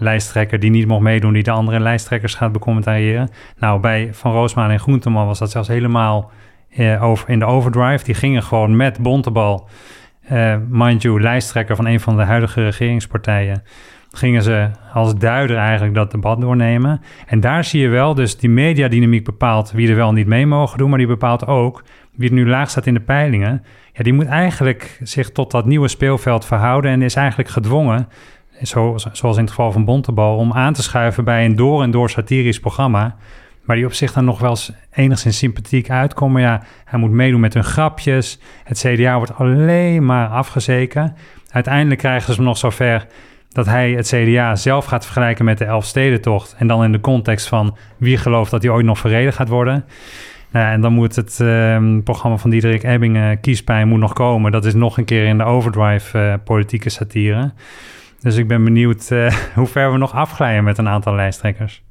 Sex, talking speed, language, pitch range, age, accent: male, 195 wpm, Dutch, 110-125 Hz, 40-59, Dutch